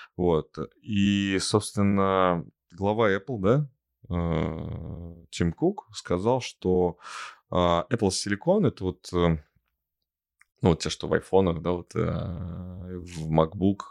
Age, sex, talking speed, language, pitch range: 20-39, male, 105 wpm, Russian, 85-110 Hz